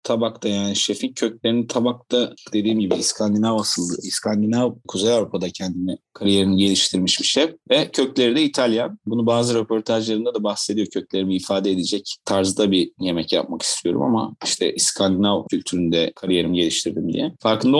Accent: native